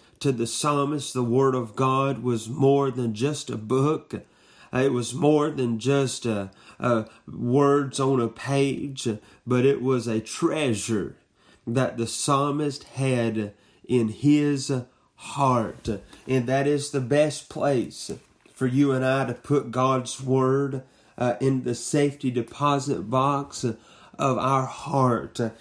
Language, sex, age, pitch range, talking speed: English, male, 30-49, 120-140 Hz, 140 wpm